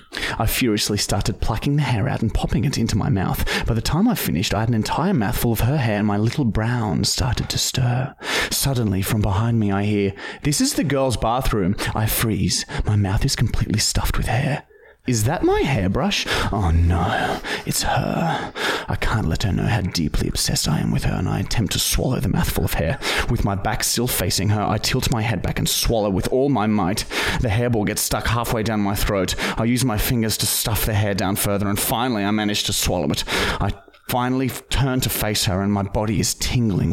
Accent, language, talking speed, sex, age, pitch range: Australian, English, 220 wpm, male, 30-49, 100-120 Hz